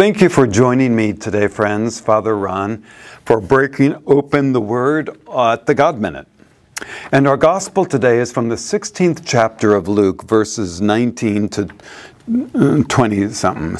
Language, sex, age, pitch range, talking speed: English, male, 50-69, 105-140 Hz, 140 wpm